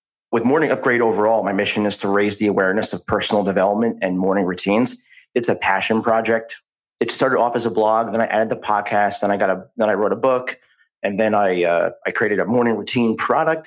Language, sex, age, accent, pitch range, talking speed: English, male, 30-49, American, 100-120 Hz, 225 wpm